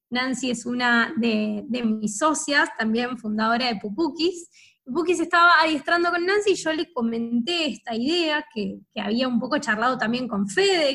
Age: 20-39